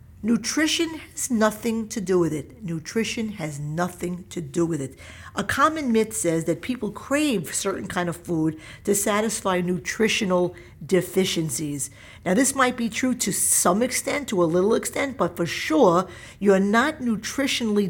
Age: 50-69